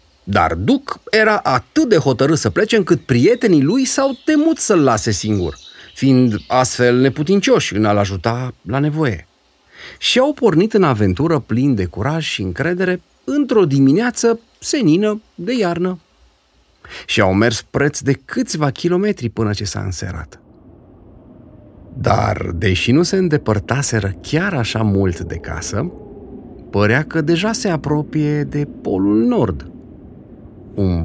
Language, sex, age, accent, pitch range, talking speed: Romanian, male, 40-59, native, 100-155 Hz, 135 wpm